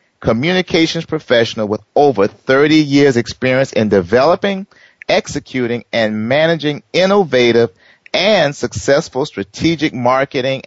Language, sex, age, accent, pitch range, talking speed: English, male, 40-59, American, 120-170 Hz, 95 wpm